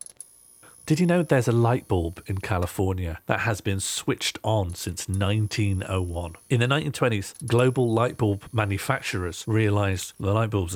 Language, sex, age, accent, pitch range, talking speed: English, male, 40-59, British, 95-115 Hz, 150 wpm